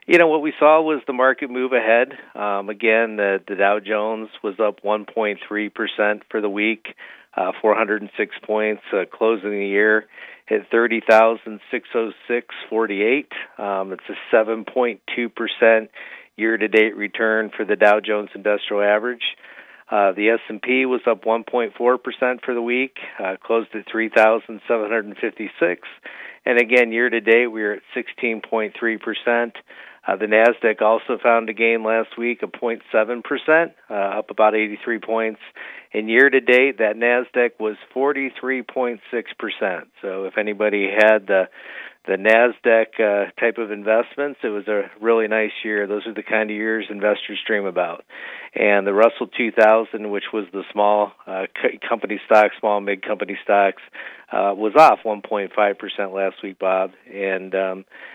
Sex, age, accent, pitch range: male, 50-69, American, 105-120 Hz